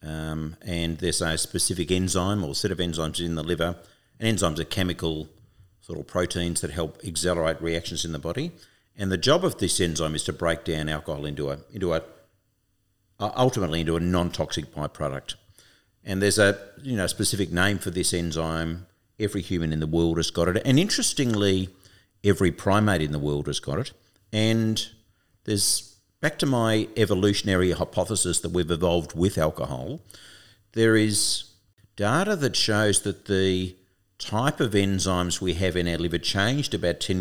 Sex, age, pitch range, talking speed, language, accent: male, 50-69, 85-105 Hz, 175 wpm, English, Australian